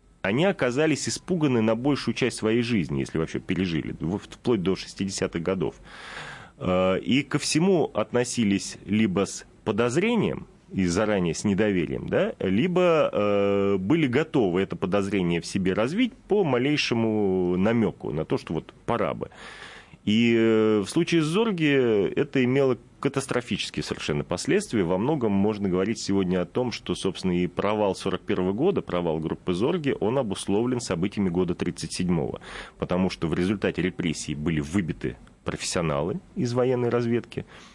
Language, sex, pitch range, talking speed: Russian, male, 90-125 Hz, 135 wpm